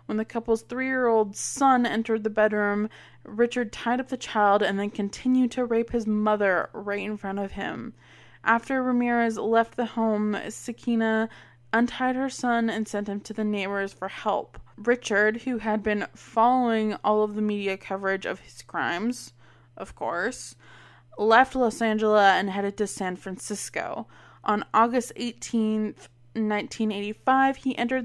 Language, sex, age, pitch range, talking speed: English, female, 20-39, 205-240 Hz, 155 wpm